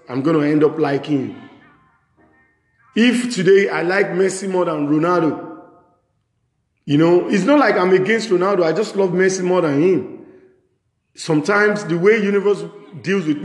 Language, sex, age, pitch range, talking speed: English, male, 40-59, 165-225 Hz, 160 wpm